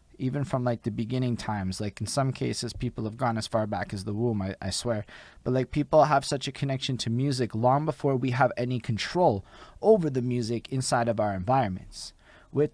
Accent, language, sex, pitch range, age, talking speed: American, English, male, 110-130 Hz, 20-39, 210 wpm